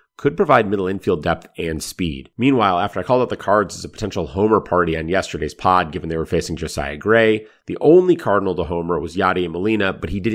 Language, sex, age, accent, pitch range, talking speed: English, male, 30-49, American, 85-110 Hz, 225 wpm